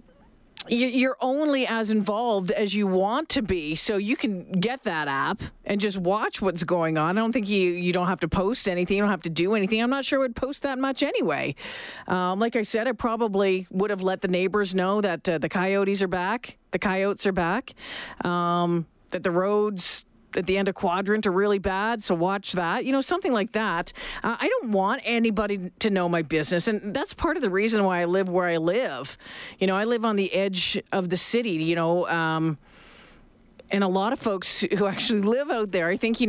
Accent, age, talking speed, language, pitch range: American, 40-59, 225 wpm, English, 180-235 Hz